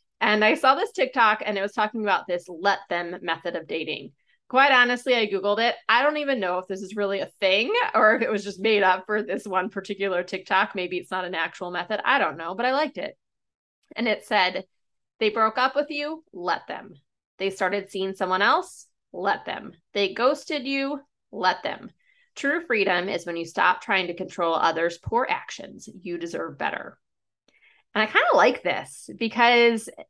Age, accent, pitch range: 20-39, American, 185-245 Hz